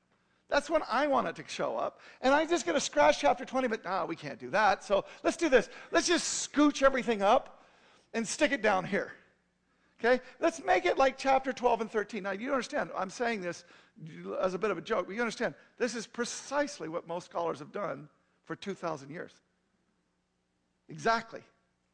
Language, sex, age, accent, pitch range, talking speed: English, male, 50-69, American, 175-250 Hz, 195 wpm